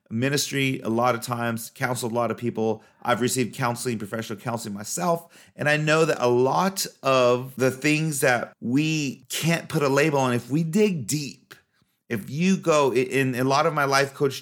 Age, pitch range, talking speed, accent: 30-49, 115-150 Hz, 195 wpm, American